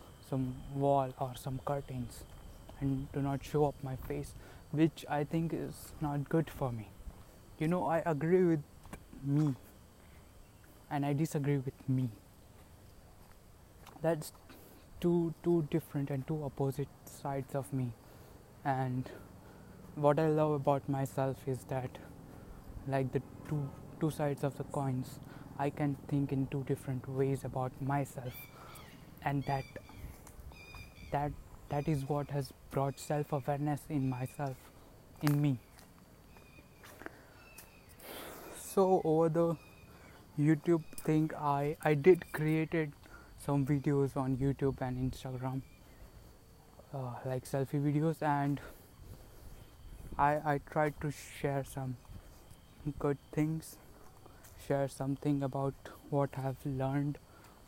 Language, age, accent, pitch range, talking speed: English, 20-39, Indian, 125-145 Hz, 120 wpm